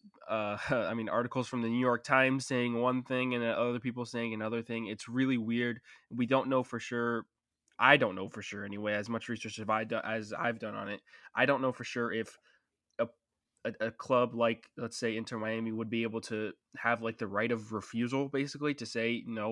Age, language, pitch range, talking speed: 20-39, English, 110-125 Hz, 210 wpm